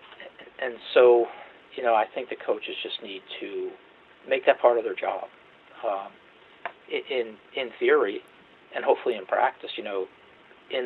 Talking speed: 155 wpm